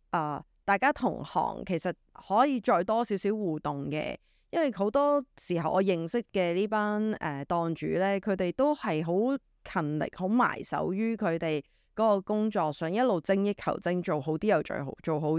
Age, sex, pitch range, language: 20-39, female, 170-220 Hz, Chinese